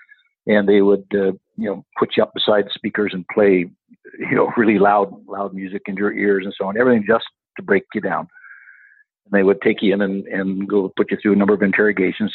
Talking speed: 235 wpm